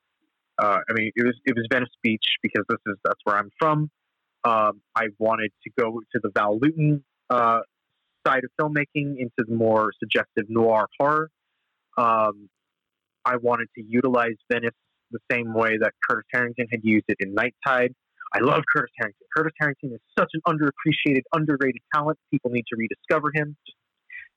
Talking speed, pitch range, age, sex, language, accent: 175 wpm, 115-150 Hz, 30-49, male, English, American